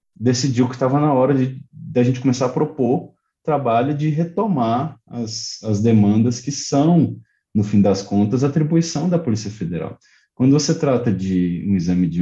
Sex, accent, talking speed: male, Brazilian, 170 wpm